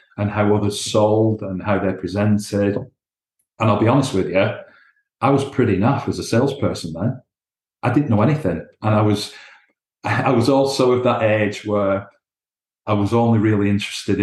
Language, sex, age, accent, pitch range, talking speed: English, male, 40-59, British, 100-115 Hz, 175 wpm